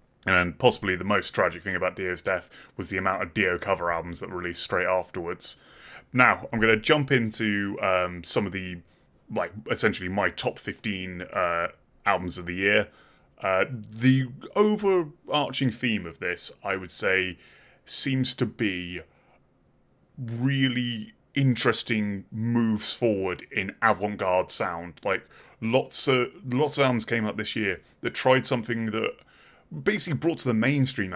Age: 30-49